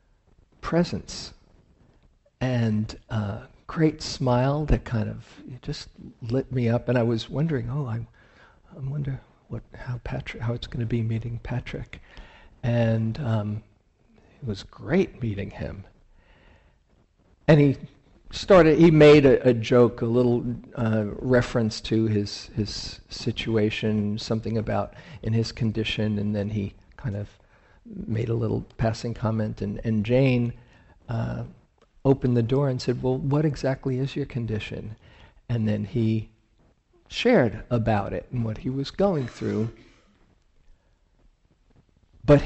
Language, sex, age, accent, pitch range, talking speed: English, male, 50-69, American, 110-135 Hz, 135 wpm